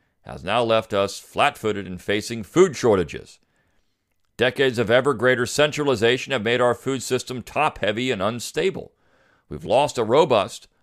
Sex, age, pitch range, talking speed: male, 50-69, 100-145 Hz, 155 wpm